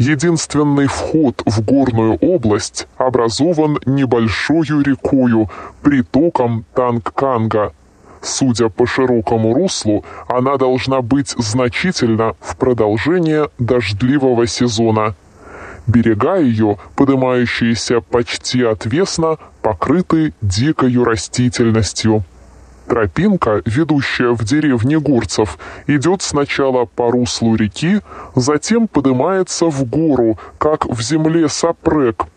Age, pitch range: 20-39, 115-150 Hz